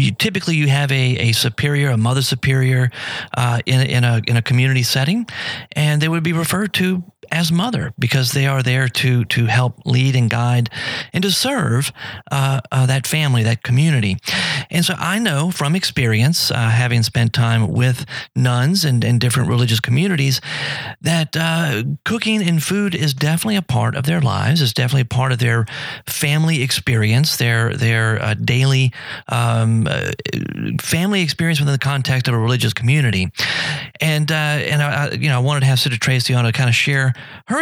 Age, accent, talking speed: 40-59, American, 185 wpm